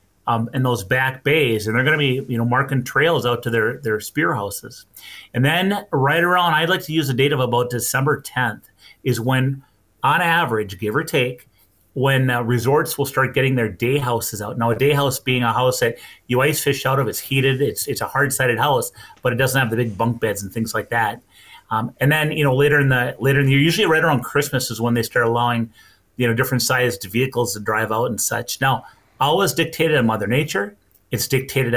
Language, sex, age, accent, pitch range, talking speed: English, male, 30-49, American, 115-140 Hz, 230 wpm